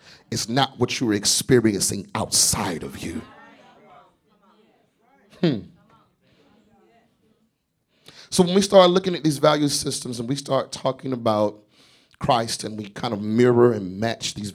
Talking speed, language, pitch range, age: 130 wpm, English, 105-140 Hz, 30-49